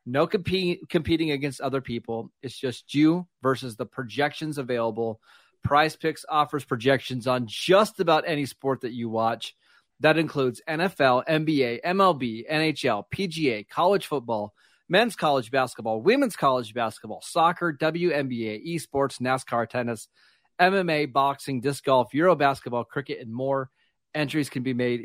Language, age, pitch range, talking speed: English, 30-49, 120-155 Hz, 140 wpm